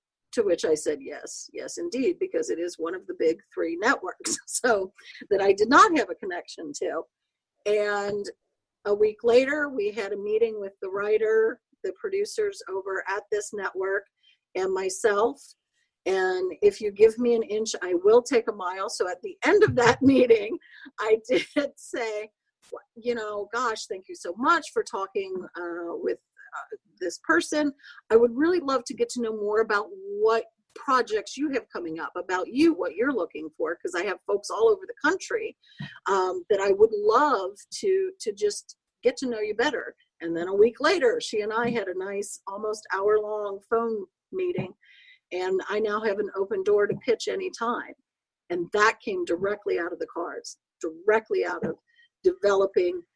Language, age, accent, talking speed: English, 50-69, American, 180 wpm